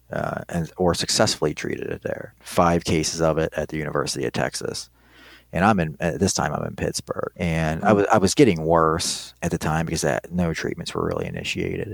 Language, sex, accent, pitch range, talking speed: English, male, American, 80-100 Hz, 215 wpm